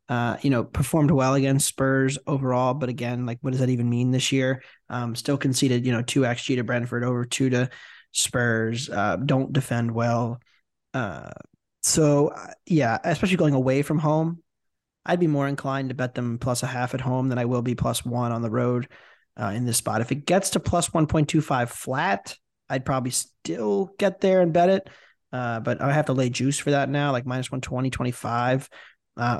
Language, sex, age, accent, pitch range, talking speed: English, male, 20-39, American, 125-145 Hz, 205 wpm